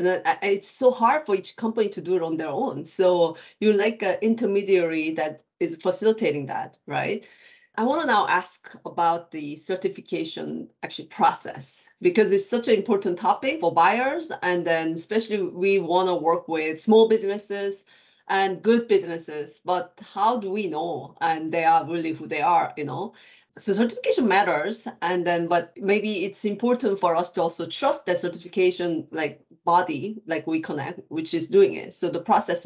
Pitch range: 175-220 Hz